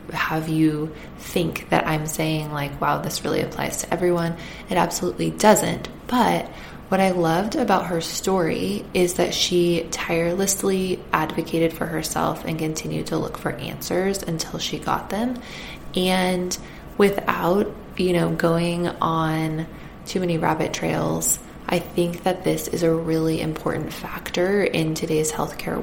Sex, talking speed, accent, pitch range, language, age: female, 145 wpm, American, 160-185 Hz, English, 20-39